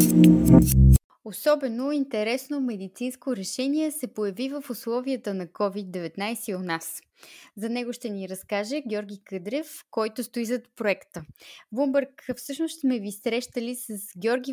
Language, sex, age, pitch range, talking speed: Bulgarian, female, 20-39, 205-265 Hz, 130 wpm